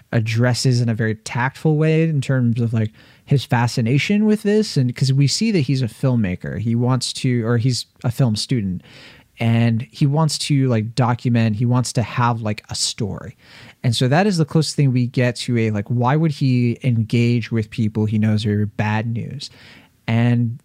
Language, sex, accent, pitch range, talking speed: English, male, American, 115-150 Hz, 195 wpm